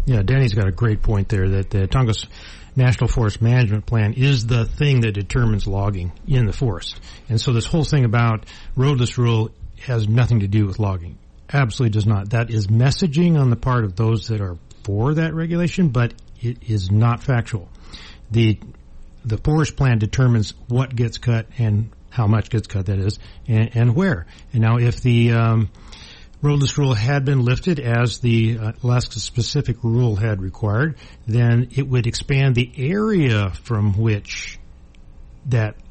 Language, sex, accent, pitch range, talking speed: English, male, American, 105-125 Hz, 170 wpm